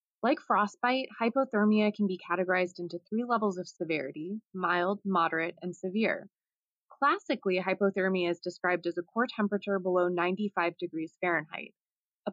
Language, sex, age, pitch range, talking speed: English, female, 20-39, 175-215 Hz, 135 wpm